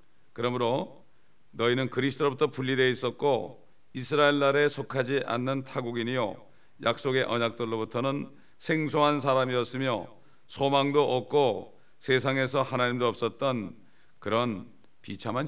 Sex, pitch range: male, 120-150 Hz